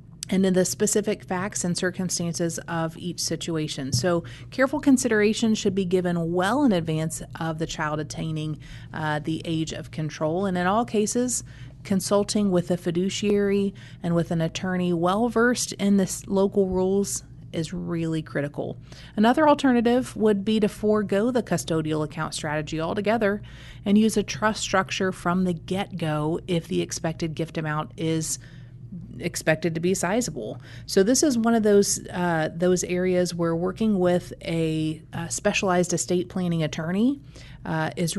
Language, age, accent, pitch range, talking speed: English, 30-49, American, 155-195 Hz, 150 wpm